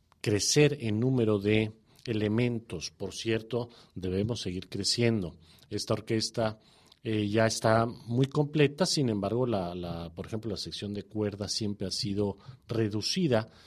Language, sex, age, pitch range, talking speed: English, male, 40-59, 100-120 Hz, 135 wpm